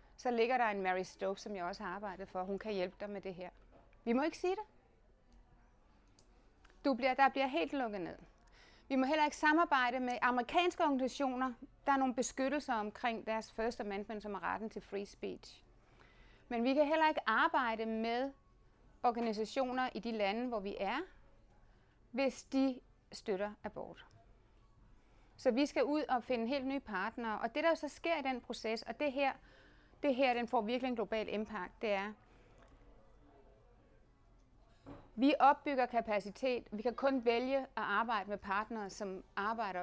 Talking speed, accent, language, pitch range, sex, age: 170 wpm, native, Danish, 210-275 Hz, female, 30-49